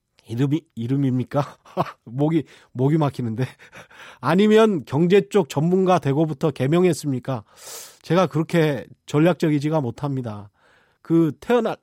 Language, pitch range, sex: Korean, 140-205 Hz, male